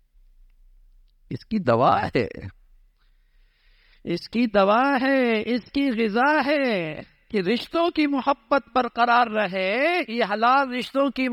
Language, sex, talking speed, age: English, male, 100 wpm, 60-79